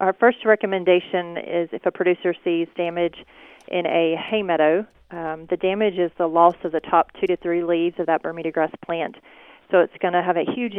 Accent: American